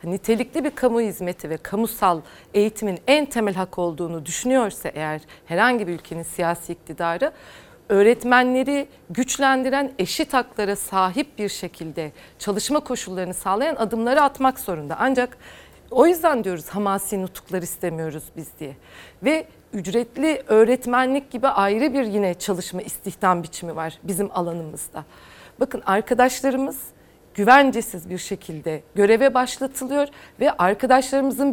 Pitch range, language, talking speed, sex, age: 190-260 Hz, Turkish, 120 wpm, female, 40-59